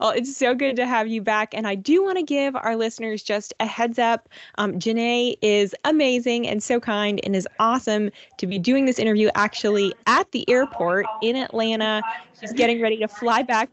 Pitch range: 195-240 Hz